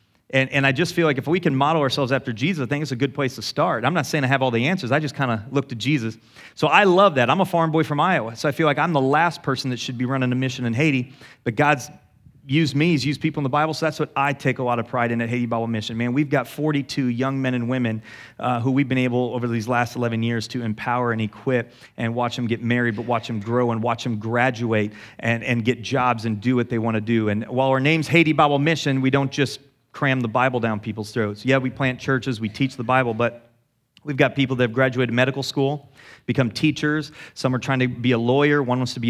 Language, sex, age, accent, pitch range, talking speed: English, male, 30-49, American, 120-145 Hz, 275 wpm